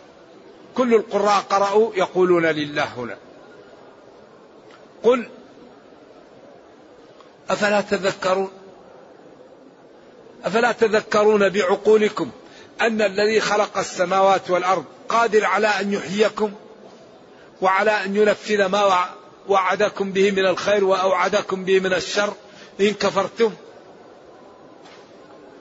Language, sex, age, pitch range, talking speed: Arabic, male, 50-69, 175-205 Hz, 80 wpm